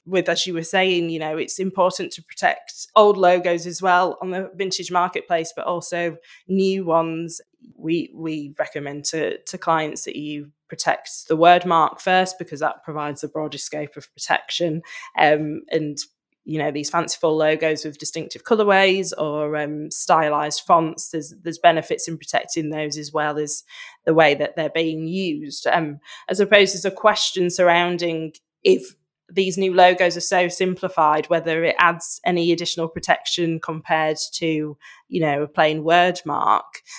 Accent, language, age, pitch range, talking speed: British, English, 20-39, 155-180 Hz, 165 wpm